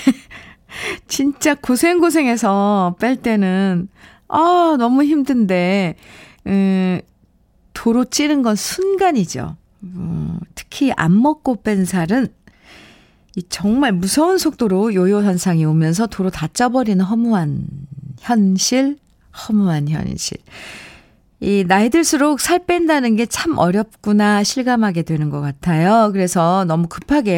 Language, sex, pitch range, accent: Korean, female, 175-260 Hz, native